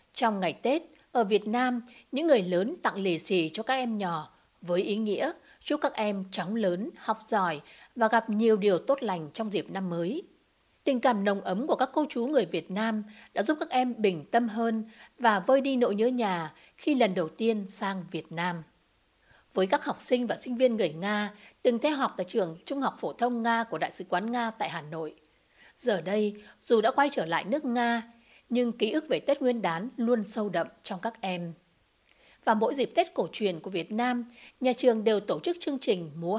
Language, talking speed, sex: Vietnamese, 220 wpm, female